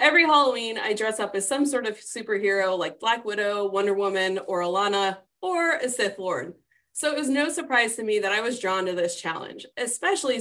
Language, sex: English, female